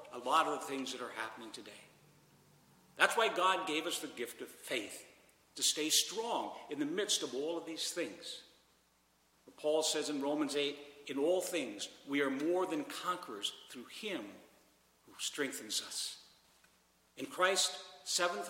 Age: 60-79